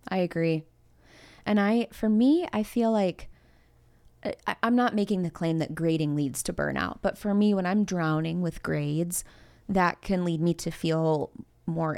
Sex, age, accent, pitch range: female, 20-39, American, 160-190 Hz